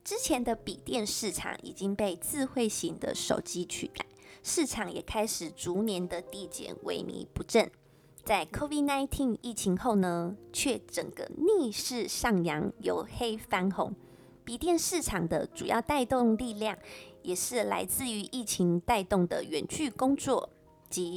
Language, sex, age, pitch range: Chinese, female, 20-39, 180-270 Hz